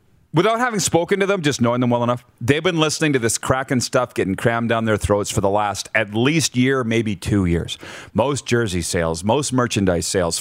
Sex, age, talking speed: male, 40-59, 215 wpm